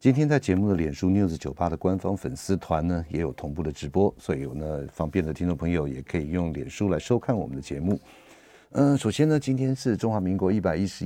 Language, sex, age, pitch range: Chinese, male, 50-69, 80-100 Hz